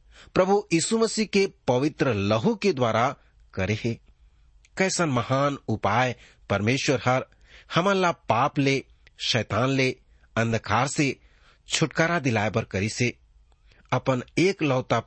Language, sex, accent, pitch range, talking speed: English, male, Indian, 110-165 Hz, 115 wpm